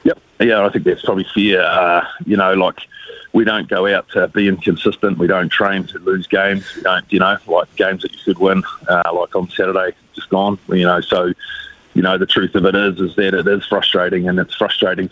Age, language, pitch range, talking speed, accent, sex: 30-49, English, 90-100 Hz, 230 wpm, Australian, male